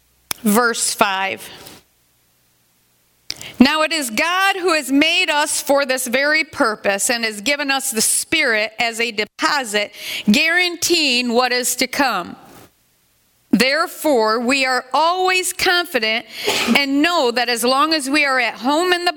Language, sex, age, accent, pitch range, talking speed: English, female, 40-59, American, 225-295 Hz, 140 wpm